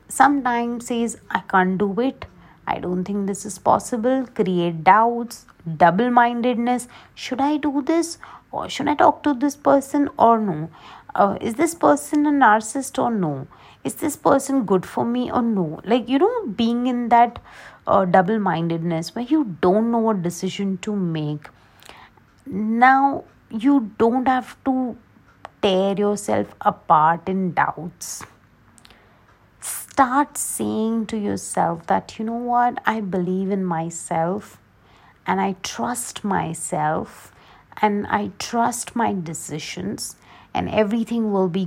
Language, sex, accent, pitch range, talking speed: English, female, Indian, 185-245 Hz, 140 wpm